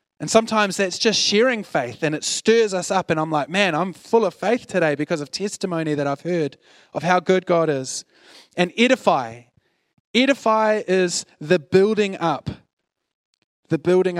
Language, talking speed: English, 170 wpm